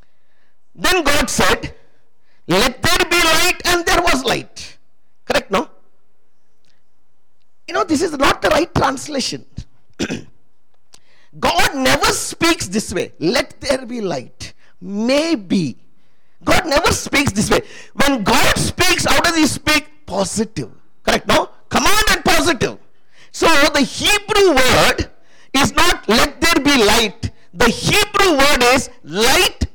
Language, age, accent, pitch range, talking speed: English, 50-69, Indian, 260-365 Hz, 130 wpm